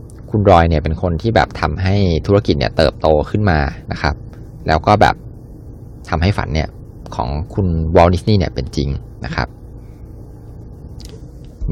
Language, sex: Thai, male